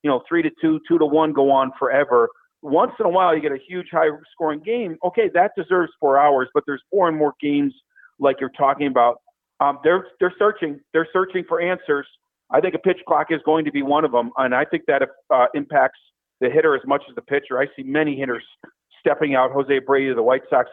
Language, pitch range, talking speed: English, 145-190 Hz, 235 wpm